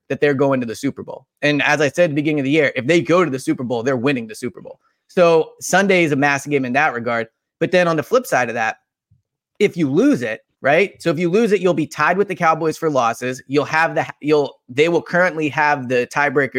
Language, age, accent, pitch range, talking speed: English, 30-49, American, 135-170 Hz, 270 wpm